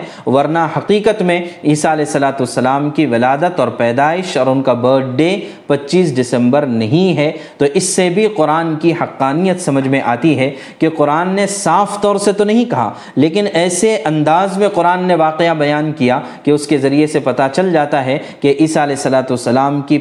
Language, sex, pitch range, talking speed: Urdu, male, 135-175 Hz, 185 wpm